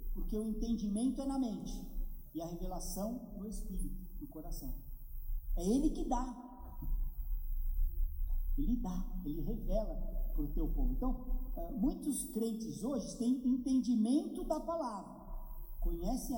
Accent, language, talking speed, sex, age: Brazilian, Portuguese, 125 wpm, male, 50-69